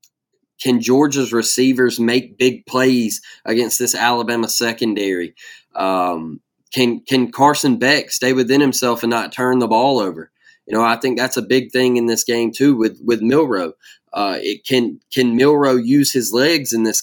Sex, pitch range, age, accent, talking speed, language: male, 115-130 Hz, 20-39, American, 175 wpm, English